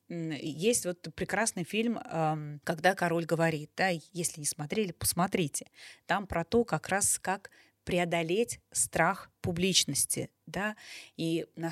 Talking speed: 125 wpm